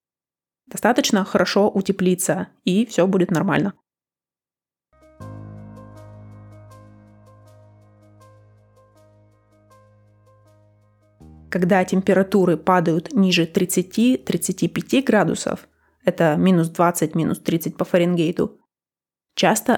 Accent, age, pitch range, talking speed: native, 20-39, 160-200 Hz, 60 wpm